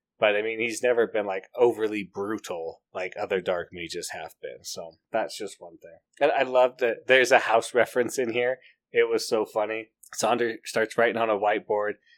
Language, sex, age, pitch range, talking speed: English, male, 30-49, 105-145 Hz, 195 wpm